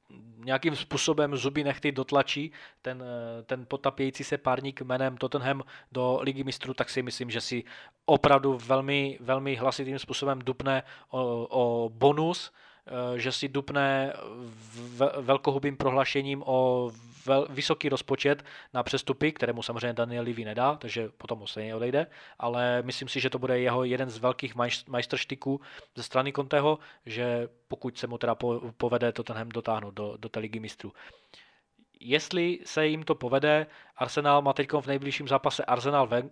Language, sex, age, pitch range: Czech, male, 20-39, 120-140 Hz